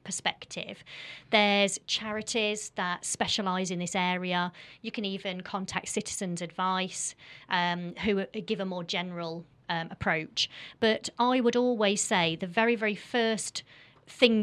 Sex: female